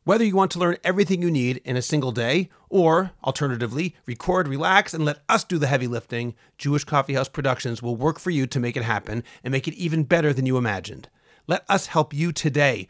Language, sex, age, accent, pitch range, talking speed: English, male, 40-59, American, 125-165 Hz, 220 wpm